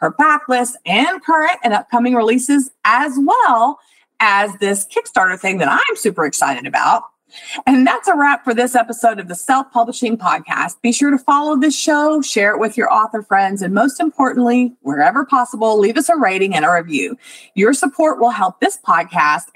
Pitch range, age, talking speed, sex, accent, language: 200-285 Hz, 40-59, 185 wpm, female, American, English